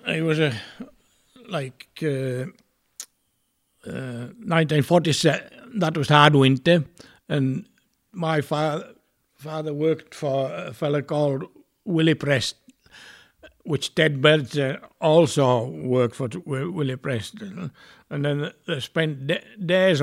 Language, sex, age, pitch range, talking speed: English, male, 60-79, 135-170 Hz, 115 wpm